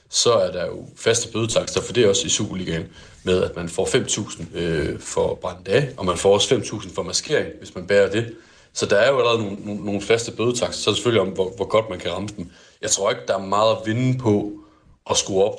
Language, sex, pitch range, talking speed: Danish, male, 95-115 Hz, 255 wpm